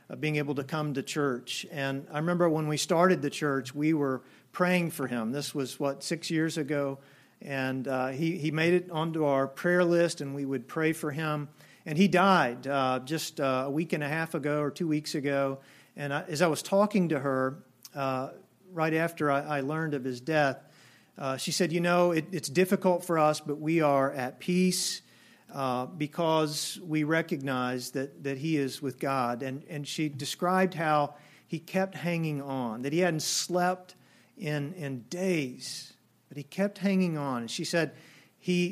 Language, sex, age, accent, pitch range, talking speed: English, male, 40-59, American, 140-170 Hz, 195 wpm